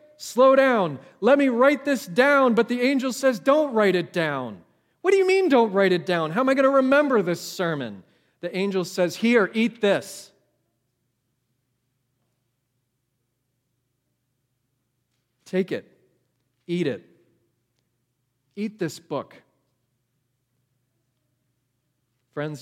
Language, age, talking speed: English, 40-59, 120 wpm